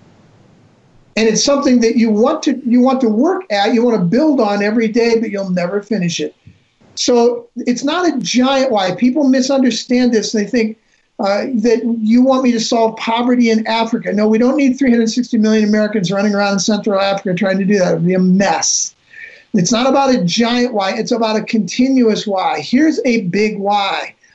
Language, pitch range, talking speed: English, 205-245 Hz, 200 wpm